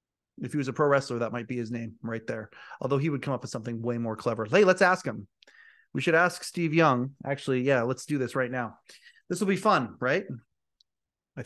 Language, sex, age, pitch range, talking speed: English, male, 30-49, 120-170 Hz, 235 wpm